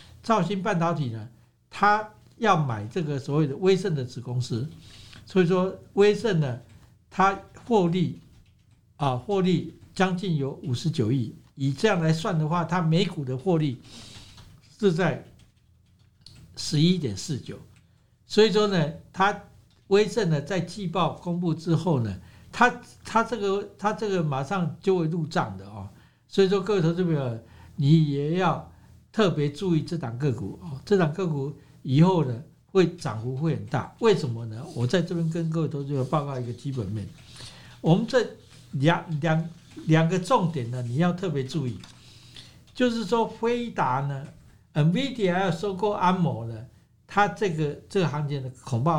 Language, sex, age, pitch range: Chinese, male, 60-79, 125-190 Hz